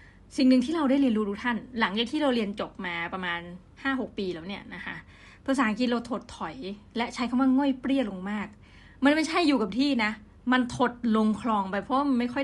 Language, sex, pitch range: Thai, female, 195-255 Hz